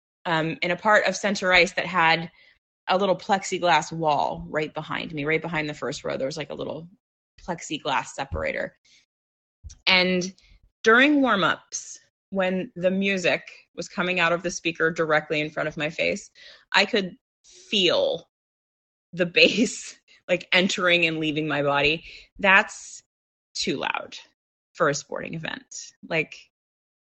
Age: 20-39